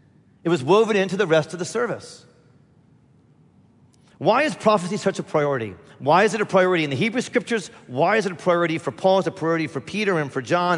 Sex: male